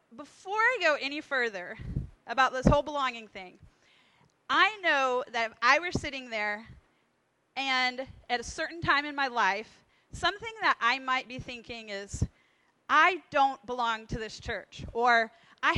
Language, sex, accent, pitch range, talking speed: English, female, American, 235-285 Hz, 155 wpm